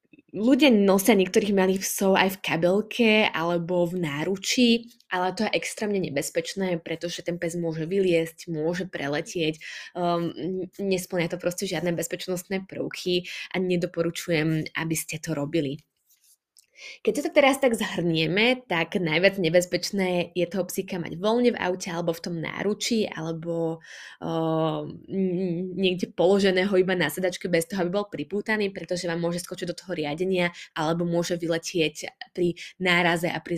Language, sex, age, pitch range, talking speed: Slovak, female, 20-39, 170-195 Hz, 145 wpm